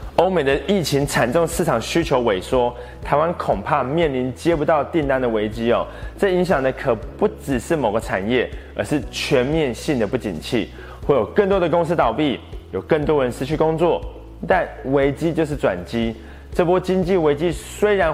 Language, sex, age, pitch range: Chinese, male, 20-39, 120-165 Hz